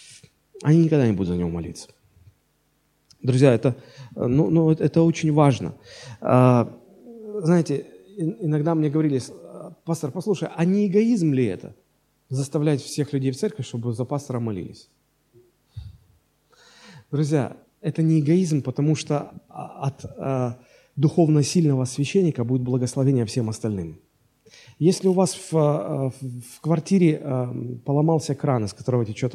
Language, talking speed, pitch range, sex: Russian, 115 wpm, 125-160 Hz, male